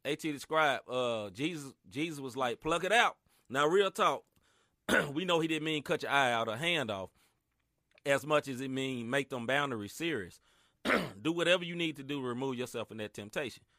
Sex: male